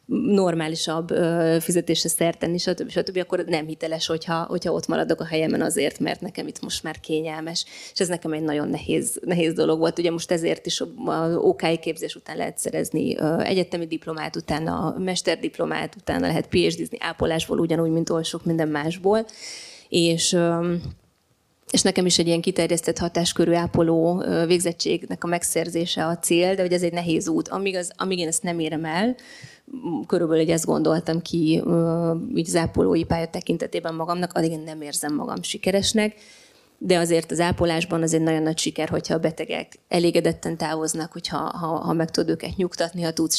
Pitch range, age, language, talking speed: 160-180 Hz, 20-39, Hungarian, 170 wpm